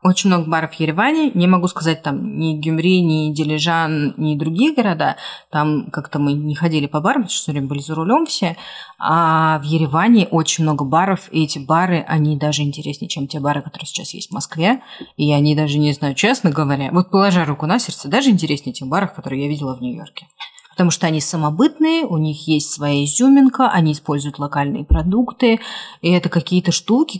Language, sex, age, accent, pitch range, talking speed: Russian, female, 30-49, native, 150-195 Hz, 190 wpm